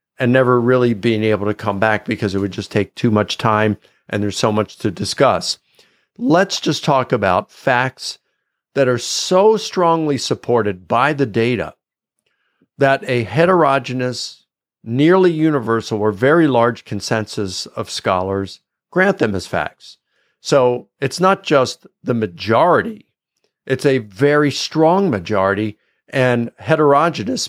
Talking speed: 140 wpm